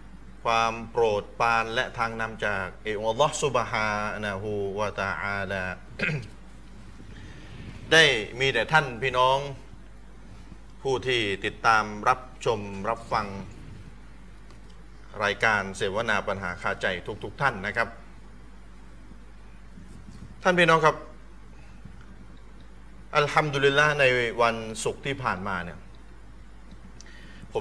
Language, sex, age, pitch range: Thai, male, 30-49, 80-125 Hz